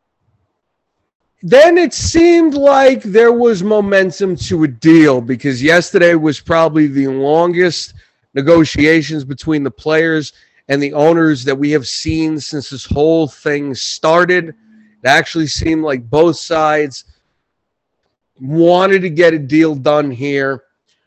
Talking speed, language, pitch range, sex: 130 wpm, English, 135-180 Hz, male